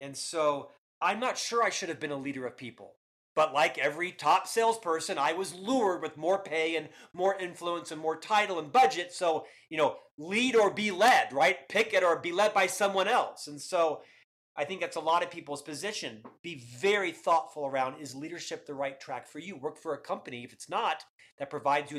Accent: American